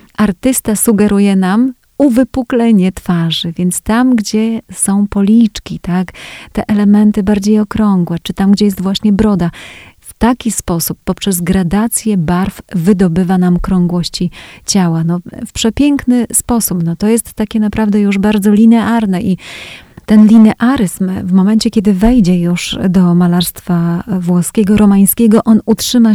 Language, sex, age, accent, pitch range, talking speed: Polish, female, 30-49, native, 180-225 Hz, 125 wpm